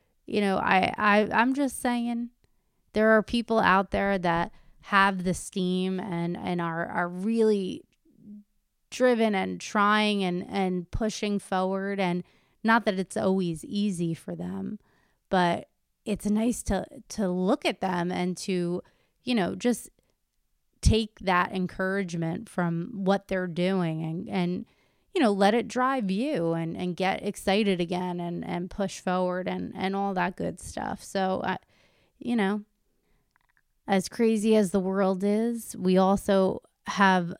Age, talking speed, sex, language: 30-49, 150 wpm, female, English